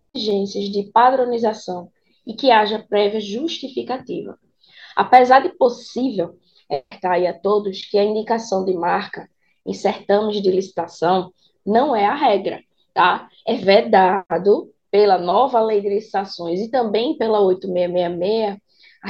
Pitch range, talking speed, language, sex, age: 200-250 Hz, 130 wpm, Portuguese, female, 20-39